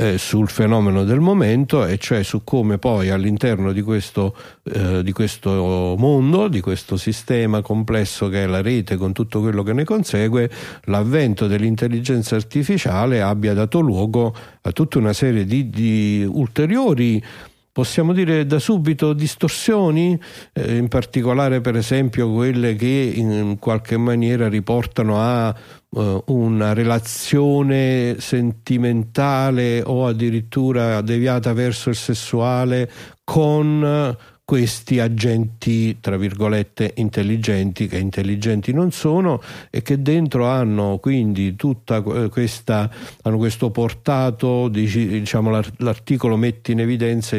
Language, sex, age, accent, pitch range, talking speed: Italian, male, 50-69, native, 110-130 Hz, 115 wpm